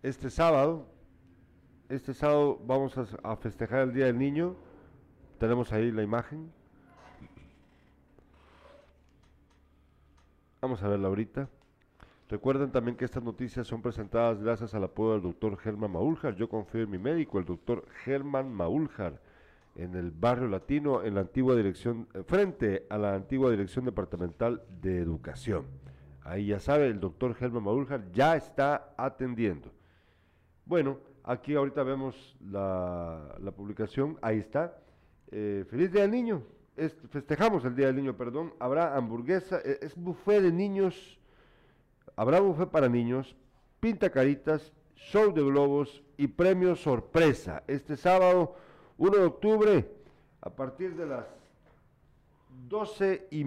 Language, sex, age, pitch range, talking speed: Spanish, male, 50-69, 105-145 Hz, 135 wpm